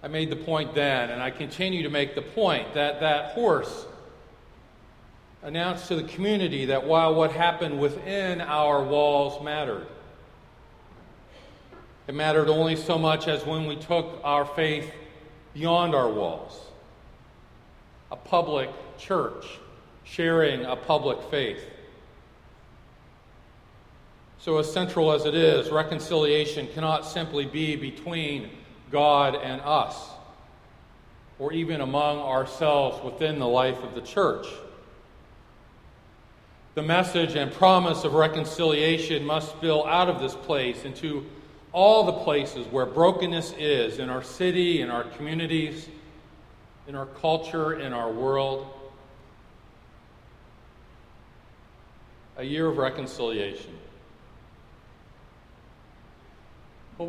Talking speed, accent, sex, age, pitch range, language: 115 wpm, American, male, 40-59, 140-165 Hz, English